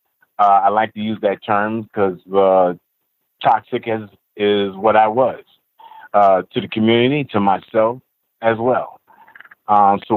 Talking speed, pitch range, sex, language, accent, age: 150 wpm, 100-115 Hz, male, English, American, 30-49